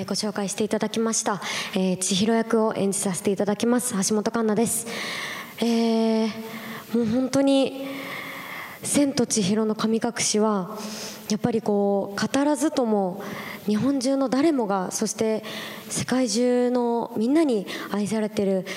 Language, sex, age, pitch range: Japanese, male, 20-39, 195-230 Hz